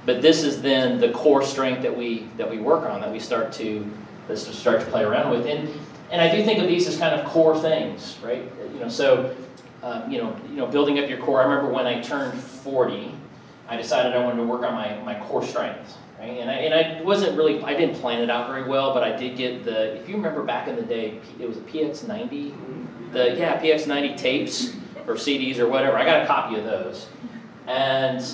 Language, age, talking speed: English, 40-59, 230 wpm